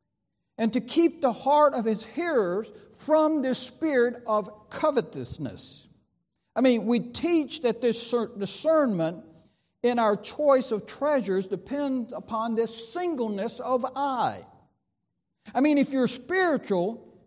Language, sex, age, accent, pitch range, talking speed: English, male, 60-79, American, 195-270 Hz, 125 wpm